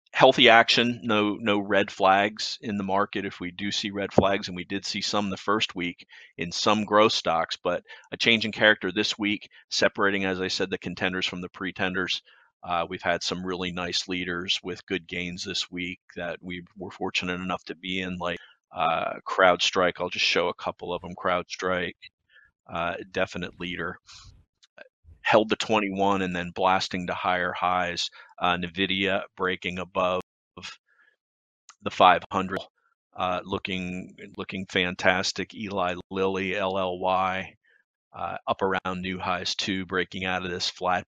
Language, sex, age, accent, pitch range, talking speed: English, male, 40-59, American, 90-100 Hz, 160 wpm